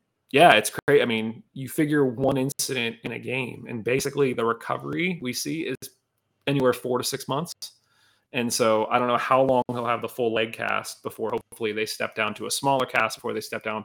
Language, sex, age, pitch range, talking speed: English, male, 30-49, 115-135 Hz, 215 wpm